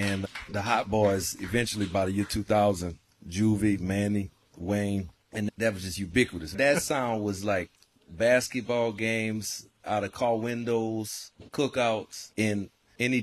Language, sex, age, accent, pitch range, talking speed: English, male, 30-49, American, 100-115 Hz, 135 wpm